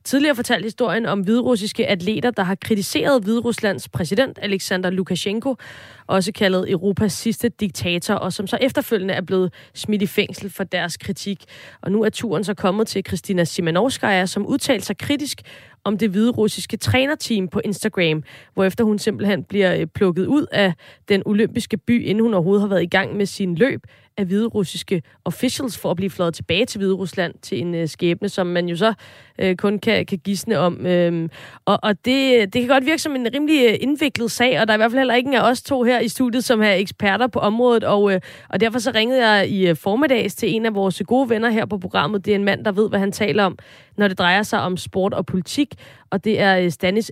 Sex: female